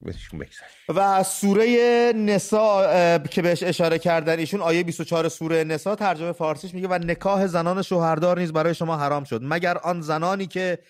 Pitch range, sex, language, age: 135-175 Hz, male, English, 30-49